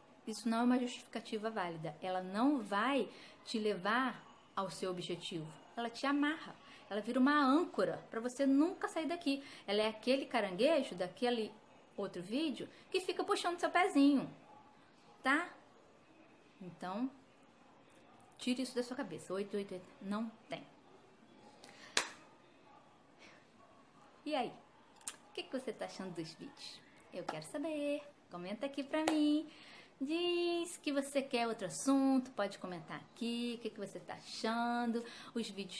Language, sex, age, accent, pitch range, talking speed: Portuguese, female, 20-39, Brazilian, 195-275 Hz, 135 wpm